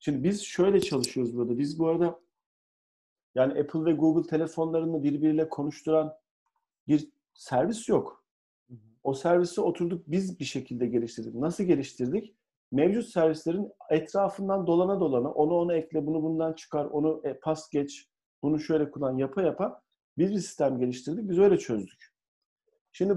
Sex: male